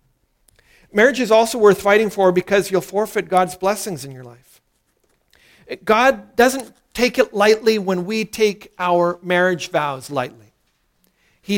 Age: 50-69